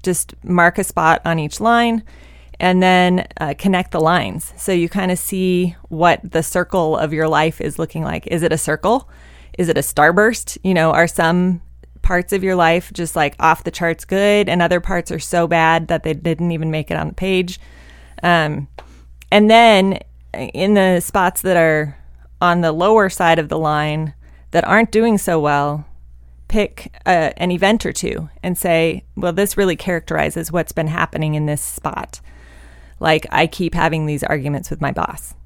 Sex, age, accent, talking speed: female, 20-39, American, 185 wpm